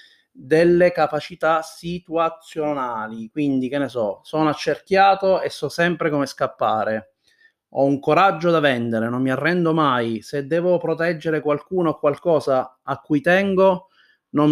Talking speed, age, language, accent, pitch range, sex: 135 wpm, 30-49, Italian, native, 125-160 Hz, male